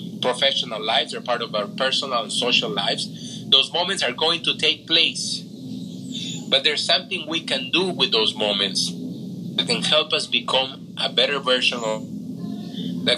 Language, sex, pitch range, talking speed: English, male, 140-200 Hz, 165 wpm